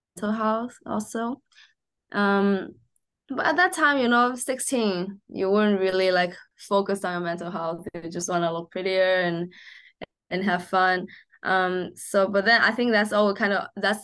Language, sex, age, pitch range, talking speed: English, female, 20-39, 180-210 Hz, 175 wpm